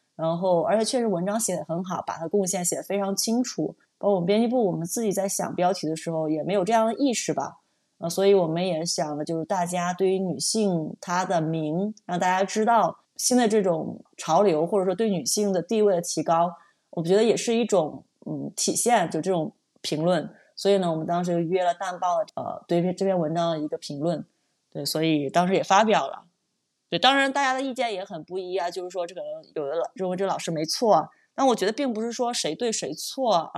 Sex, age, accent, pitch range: female, 20-39, native, 170-210 Hz